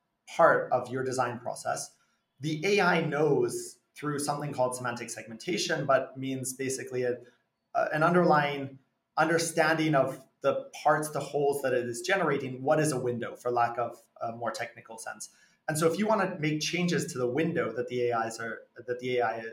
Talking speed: 180 wpm